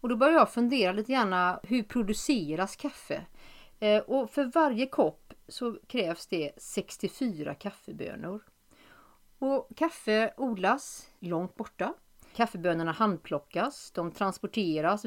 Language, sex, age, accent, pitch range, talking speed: Swedish, female, 40-59, native, 170-235 Hz, 110 wpm